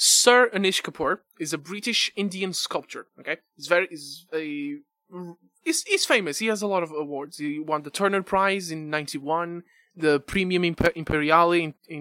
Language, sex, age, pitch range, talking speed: English, male, 20-39, 155-230 Hz, 175 wpm